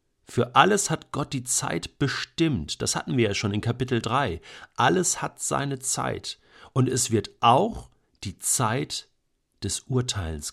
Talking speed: 155 wpm